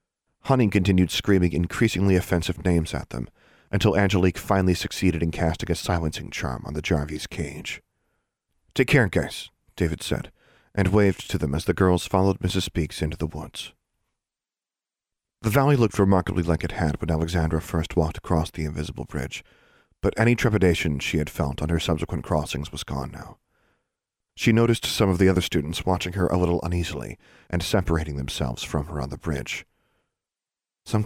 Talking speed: 170 wpm